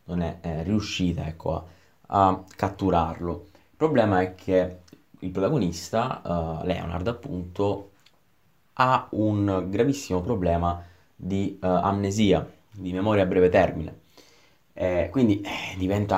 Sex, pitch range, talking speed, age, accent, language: male, 90-105 Hz, 120 wpm, 20-39, native, Italian